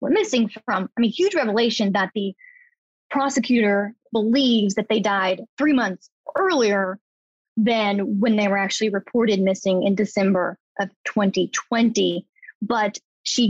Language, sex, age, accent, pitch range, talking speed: English, female, 20-39, American, 195-250 Hz, 130 wpm